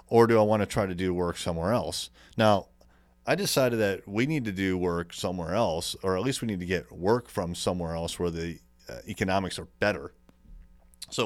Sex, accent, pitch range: male, American, 85-105 Hz